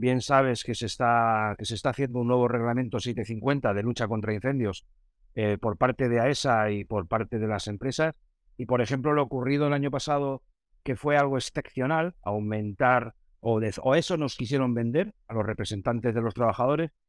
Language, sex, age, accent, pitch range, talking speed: Spanish, male, 60-79, Spanish, 115-140 Hz, 190 wpm